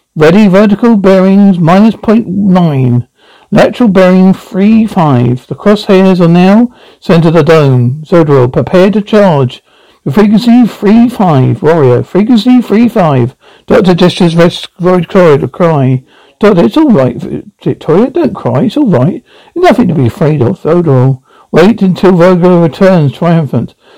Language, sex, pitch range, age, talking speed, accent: English, male, 145-210 Hz, 60-79, 145 wpm, British